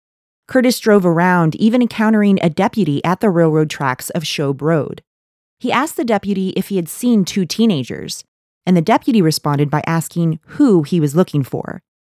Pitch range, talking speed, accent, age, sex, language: 155-205 Hz, 175 wpm, American, 30-49, female, English